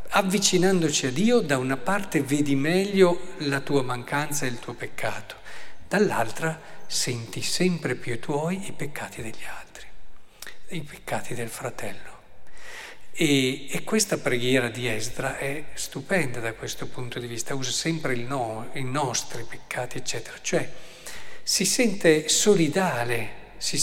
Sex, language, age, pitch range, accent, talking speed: male, Italian, 50-69, 125-170 Hz, native, 140 wpm